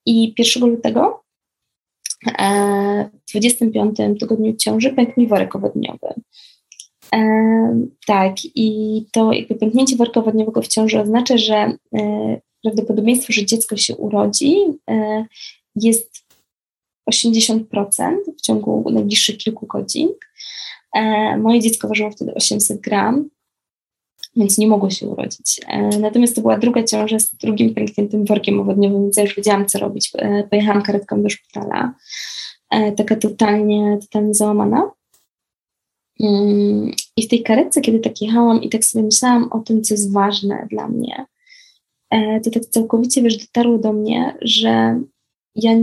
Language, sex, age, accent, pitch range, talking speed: Polish, female, 20-39, native, 210-235 Hz, 120 wpm